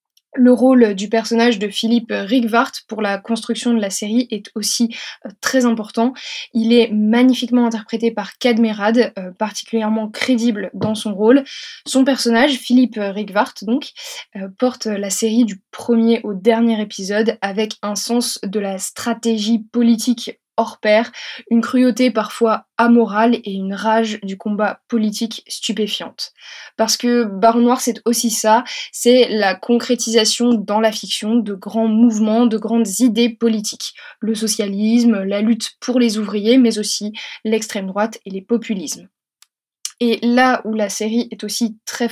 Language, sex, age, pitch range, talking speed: French, female, 20-39, 215-240 Hz, 150 wpm